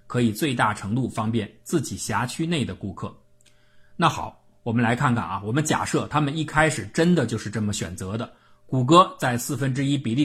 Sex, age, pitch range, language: male, 50-69, 110-155 Hz, Chinese